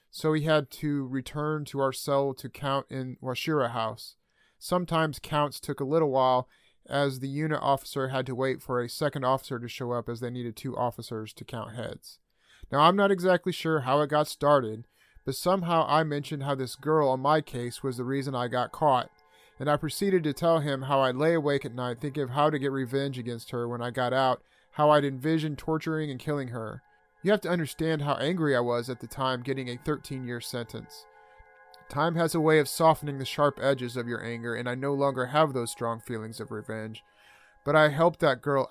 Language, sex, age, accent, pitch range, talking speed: English, male, 30-49, American, 125-155 Hz, 215 wpm